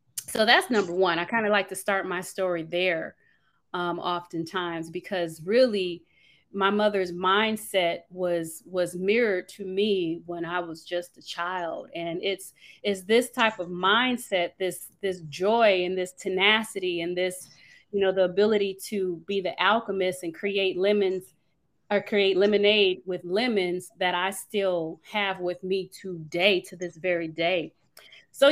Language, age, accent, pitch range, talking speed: English, 30-49, American, 180-205 Hz, 155 wpm